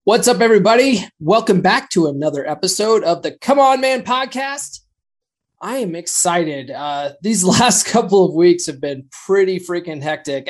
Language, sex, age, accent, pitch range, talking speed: English, male, 20-39, American, 135-190 Hz, 160 wpm